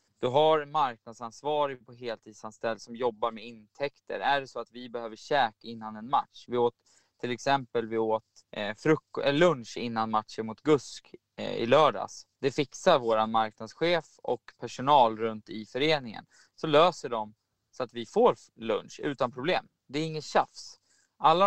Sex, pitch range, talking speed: male, 115-135 Hz, 165 wpm